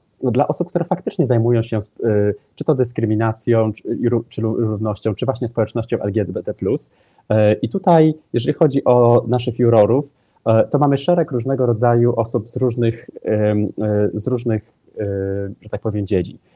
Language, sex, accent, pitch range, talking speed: Polish, male, native, 105-120 Hz, 130 wpm